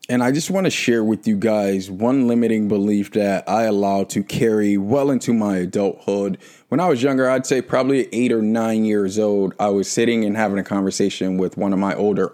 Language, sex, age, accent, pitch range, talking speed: English, male, 20-39, American, 100-115 Hz, 220 wpm